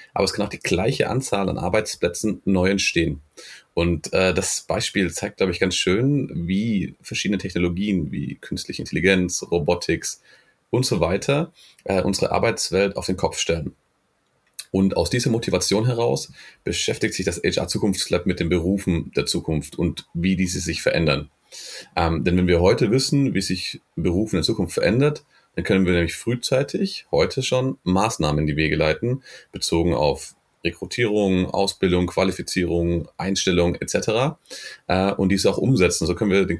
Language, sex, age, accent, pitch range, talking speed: German, male, 30-49, German, 90-110 Hz, 160 wpm